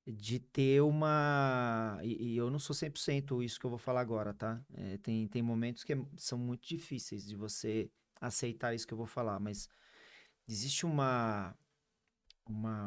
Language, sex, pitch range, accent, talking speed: Portuguese, male, 115-140 Hz, Brazilian, 165 wpm